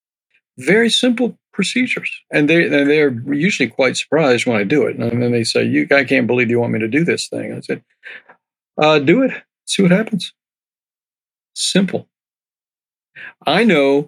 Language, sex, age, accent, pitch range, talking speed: English, male, 50-69, American, 125-170 Hz, 175 wpm